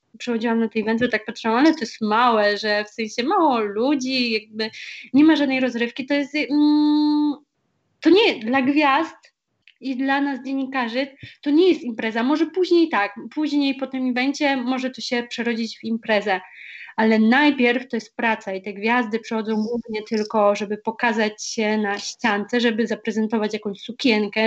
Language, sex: Polish, female